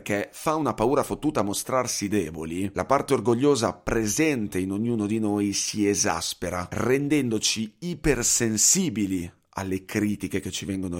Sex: male